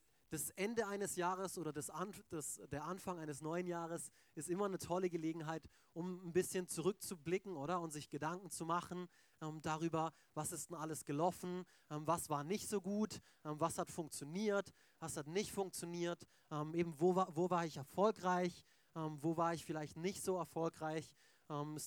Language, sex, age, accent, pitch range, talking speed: German, male, 30-49, German, 155-185 Hz, 185 wpm